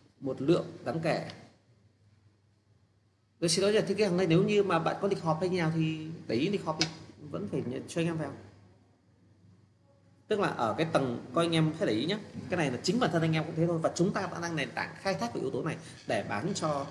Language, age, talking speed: Vietnamese, 30-49, 250 wpm